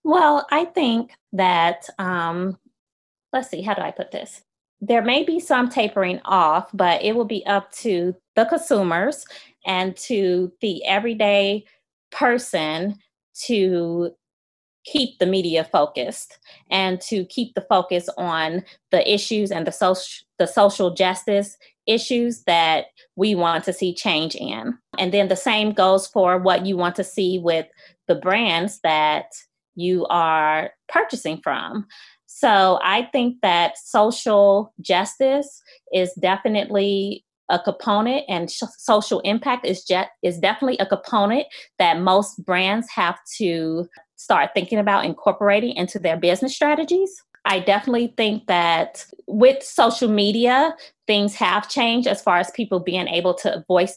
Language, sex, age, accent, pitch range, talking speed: English, female, 20-39, American, 180-235 Hz, 140 wpm